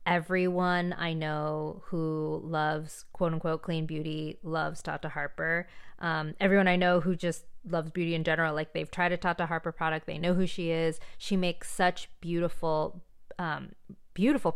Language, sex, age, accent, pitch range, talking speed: English, female, 20-39, American, 160-185 Hz, 165 wpm